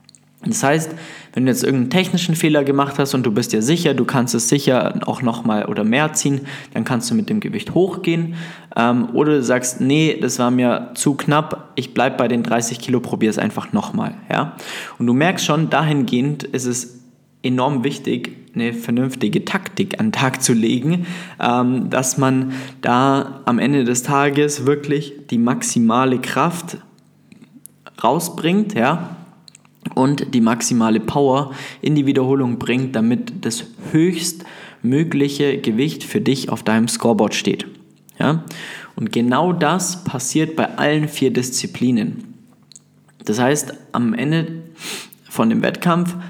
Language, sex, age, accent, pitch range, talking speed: German, male, 20-39, German, 125-170 Hz, 150 wpm